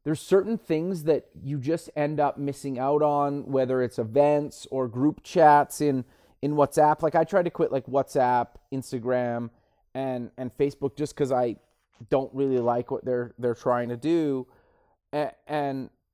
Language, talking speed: English, 165 wpm